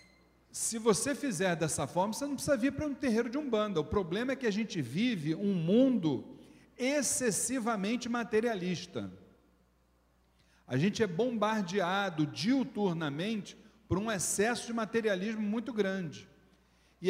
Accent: Brazilian